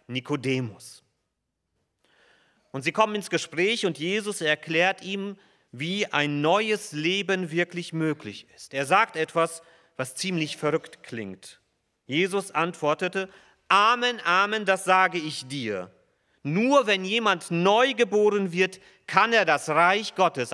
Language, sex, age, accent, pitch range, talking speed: German, male, 40-59, German, 140-190 Hz, 125 wpm